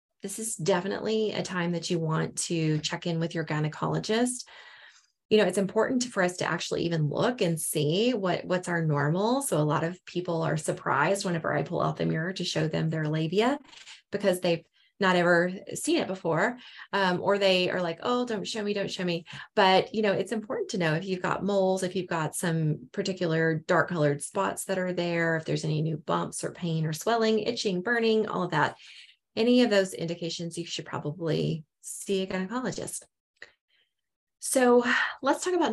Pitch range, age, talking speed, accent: 160-200 Hz, 20-39, 195 wpm, American